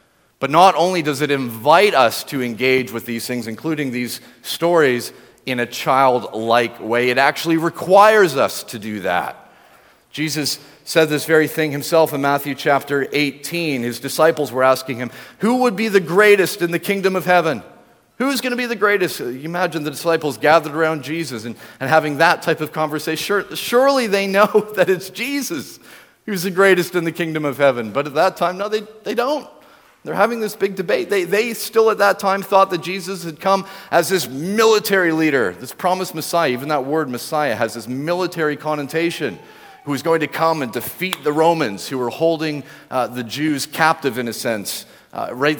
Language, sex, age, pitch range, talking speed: English, male, 40-59, 140-195 Hz, 190 wpm